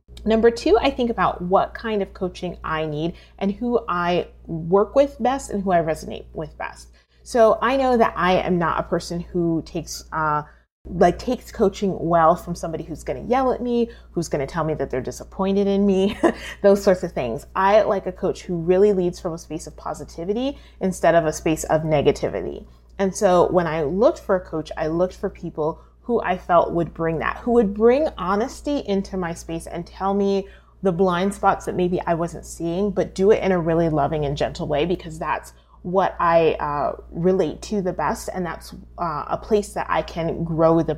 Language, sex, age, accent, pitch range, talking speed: English, female, 30-49, American, 165-210 Hz, 210 wpm